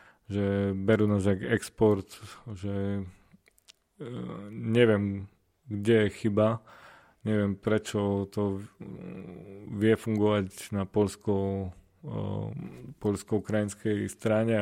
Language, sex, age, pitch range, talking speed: Slovak, male, 30-49, 100-110 Hz, 75 wpm